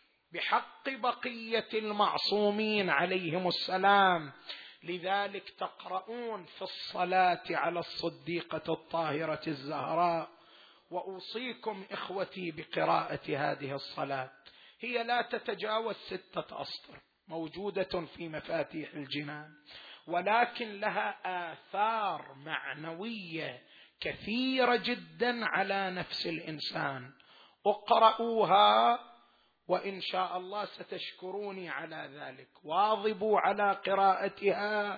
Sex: male